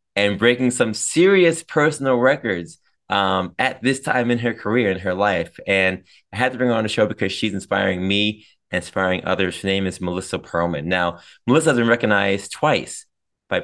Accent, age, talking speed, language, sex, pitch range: American, 20-39, 195 wpm, English, male, 95-115 Hz